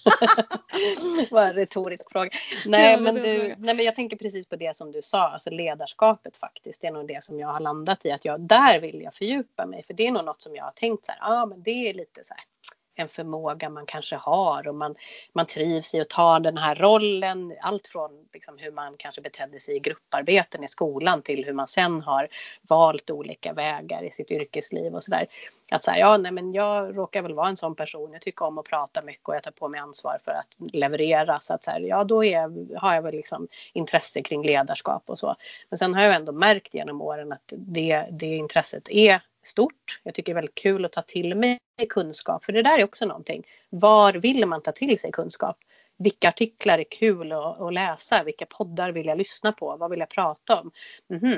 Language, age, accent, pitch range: English, 30-49, Swedish, 160-220 Hz